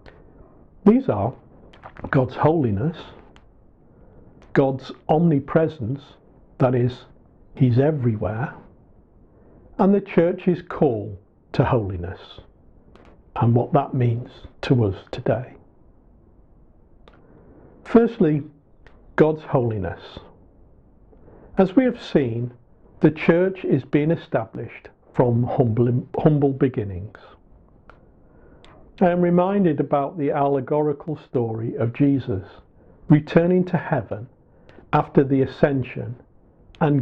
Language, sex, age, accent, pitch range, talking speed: English, male, 50-69, British, 120-160 Hz, 90 wpm